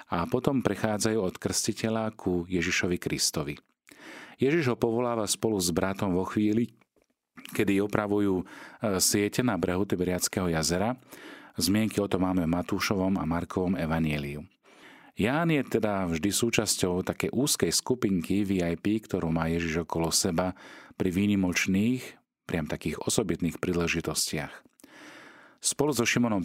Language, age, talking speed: Slovak, 40-59, 125 wpm